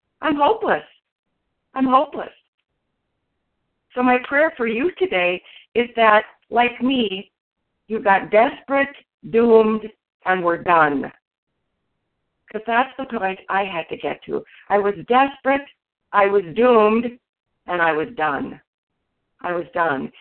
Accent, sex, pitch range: American, female, 180-250 Hz